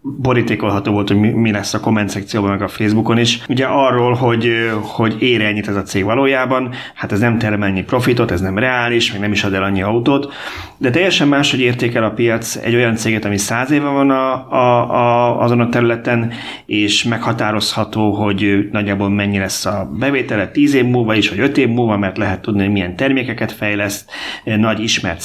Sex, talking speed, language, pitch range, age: male, 190 wpm, Hungarian, 105-120 Hz, 30-49